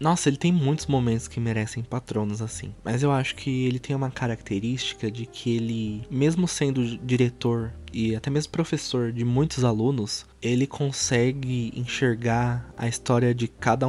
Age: 20-39